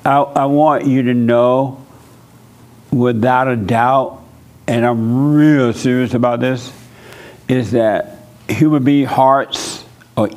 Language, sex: English, male